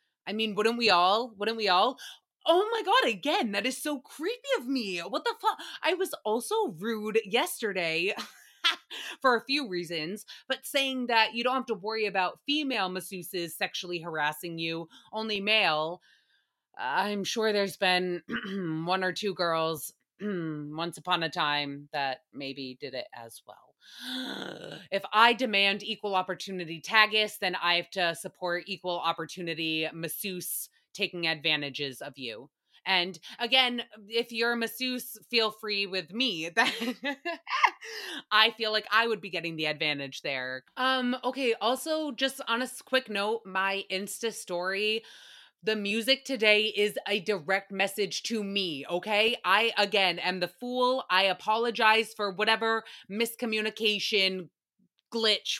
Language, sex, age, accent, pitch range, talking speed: English, female, 20-39, American, 180-245 Hz, 145 wpm